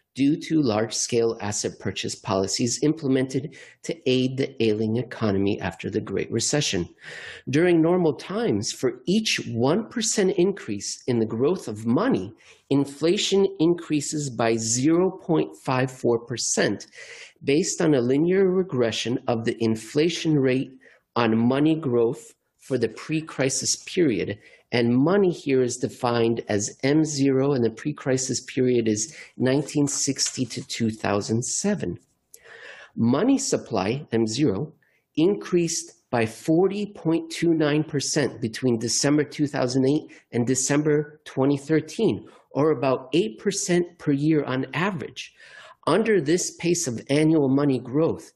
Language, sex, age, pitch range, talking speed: English, male, 40-59, 120-160 Hz, 110 wpm